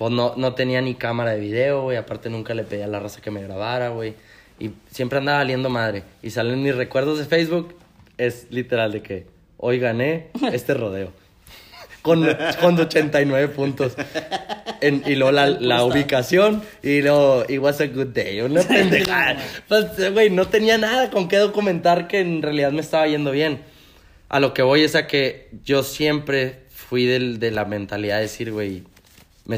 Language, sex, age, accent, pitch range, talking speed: Spanish, male, 20-39, Mexican, 115-155 Hz, 185 wpm